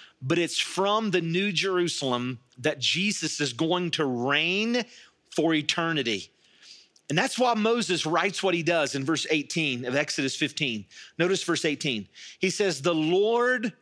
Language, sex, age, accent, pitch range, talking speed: English, male, 40-59, American, 145-195 Hz, 150 wpm